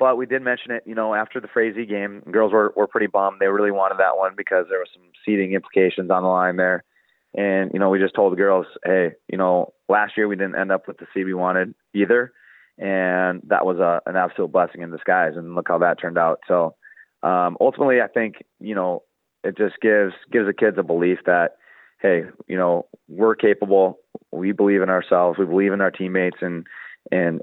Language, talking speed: English, 220 wpm